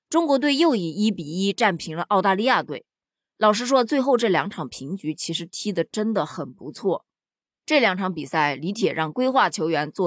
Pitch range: 170-240 Hz